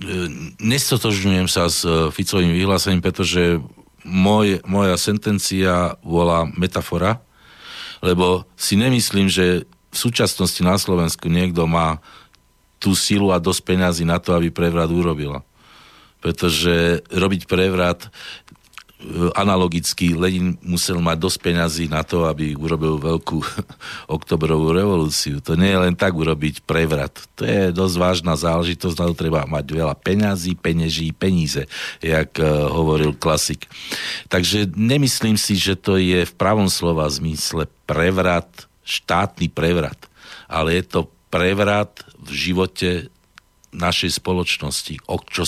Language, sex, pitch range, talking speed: Slovak, male, 80-95 Hz, 125 wpm